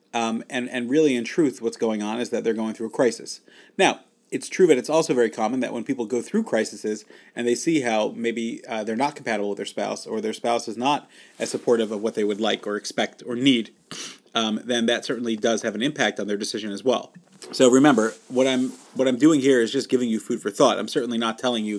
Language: English